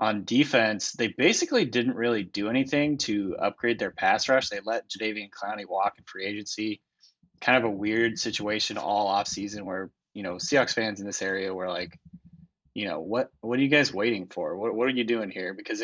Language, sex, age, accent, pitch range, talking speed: English, male, 20-39, American, 105-120 Hz, 210 wpm